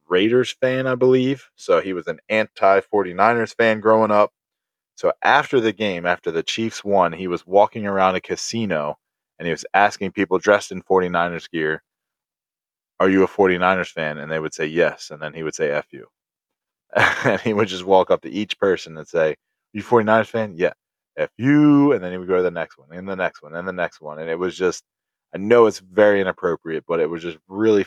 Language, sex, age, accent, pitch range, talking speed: English, male, 20-39, American, 85-110 Hz, 215 wpm